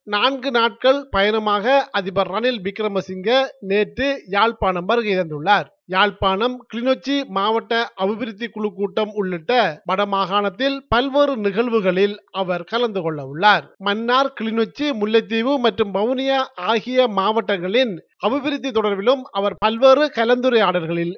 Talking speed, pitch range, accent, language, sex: 95 wpm, 195-245 Hz, native, Tamil, male